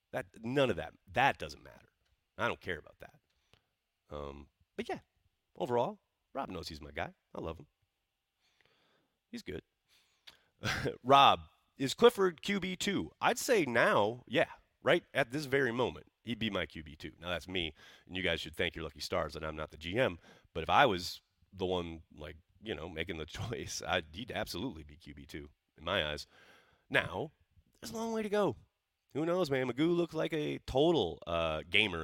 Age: 30-49